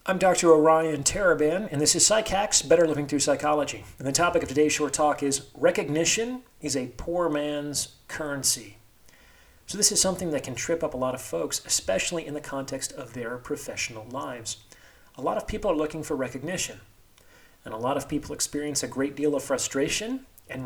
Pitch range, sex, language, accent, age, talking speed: 125-165 Hz, male, English, American, 40-59, 190 wpm